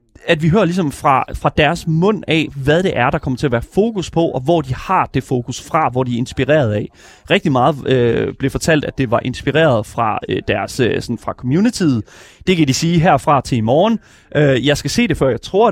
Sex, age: male, 30-49